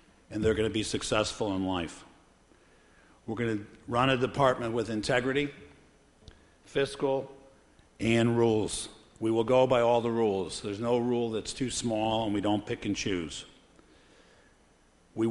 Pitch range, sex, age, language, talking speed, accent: 105-125 Hz, male, 60-79, English, 155 wpm, American